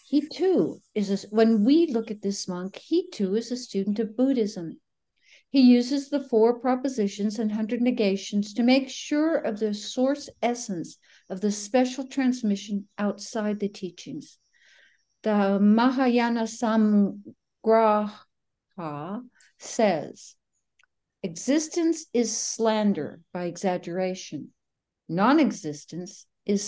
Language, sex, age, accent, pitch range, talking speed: English, female, 60-79, American, 190-250 Hz, 110 wpm